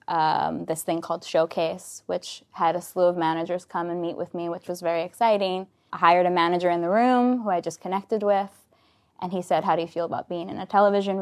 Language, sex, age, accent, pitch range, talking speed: English, female, 20-39, American, 170-200 Hz, 235 wpm